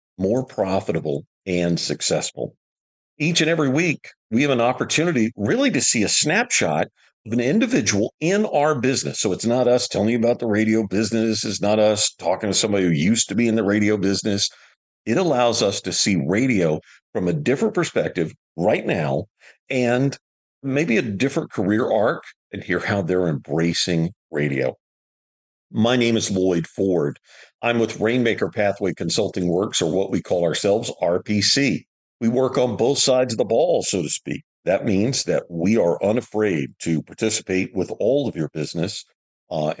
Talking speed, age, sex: 170 wpm, 50-69, male